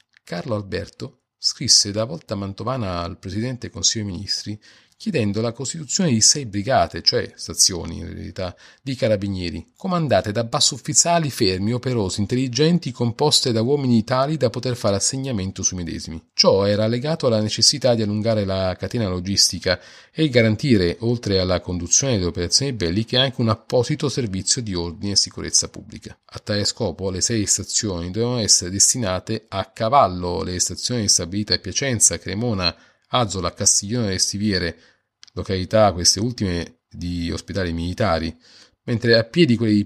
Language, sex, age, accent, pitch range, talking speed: Italian, male, 40-59, native, 95-120 Hz, 150 wpm